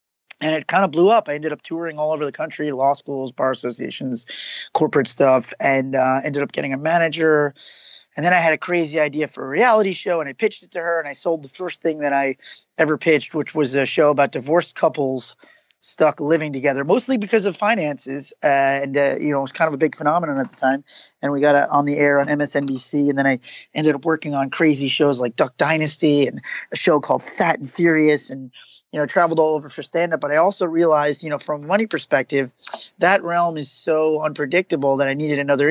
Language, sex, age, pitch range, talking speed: English, male, 20-39, 140-160 Hz, 230 wpm